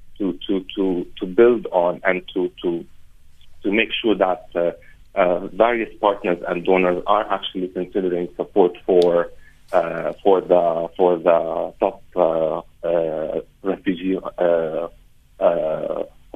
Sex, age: male, 40-59